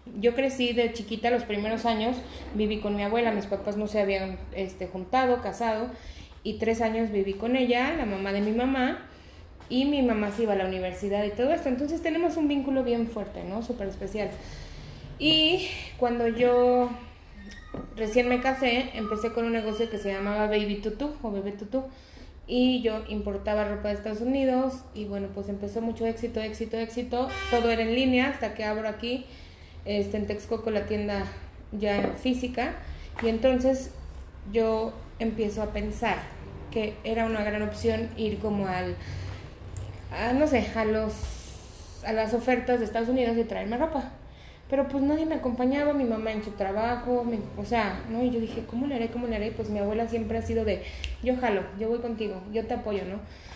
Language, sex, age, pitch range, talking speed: Spanish, female, 30-49, 210-245 Hz, 185 wpm